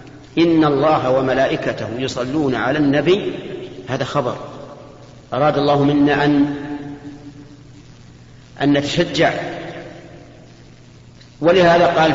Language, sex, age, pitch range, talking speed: Arabic, male, 50-69, 130-170 Hz, 80 wpm